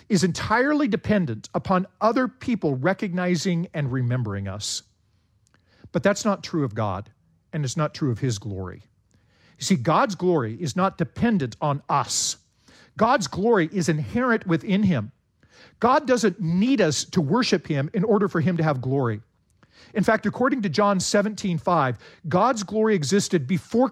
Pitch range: 130-200 Hz